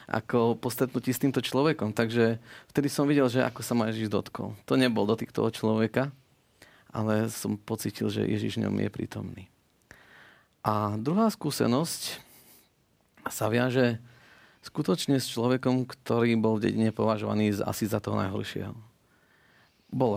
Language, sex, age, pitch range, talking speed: Slovak, male, 30-49, 100-125 Hz, 135 wpm